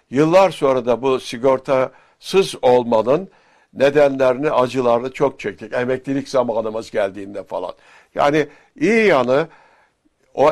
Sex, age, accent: male, 60-79, native